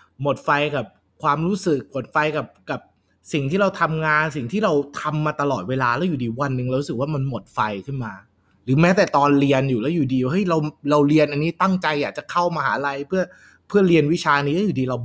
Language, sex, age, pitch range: Thai, male, 20-39, 125-165 Hz